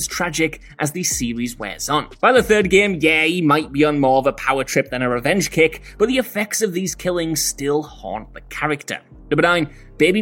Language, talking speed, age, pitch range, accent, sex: English, 215 wpm, 20-39, 145-205 Hz, British, male